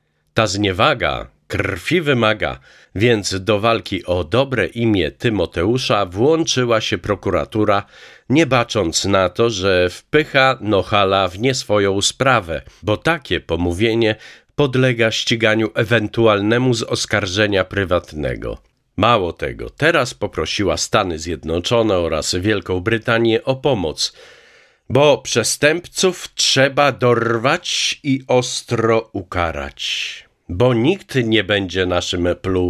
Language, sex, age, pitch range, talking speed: Polish, male, 50-69, 90-125 Hz, 105 wpm